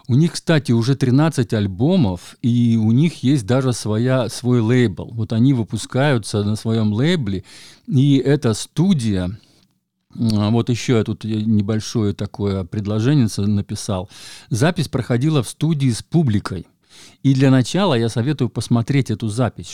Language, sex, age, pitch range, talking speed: Russian, male, 50-69, 105-130 Hz, 135 wpm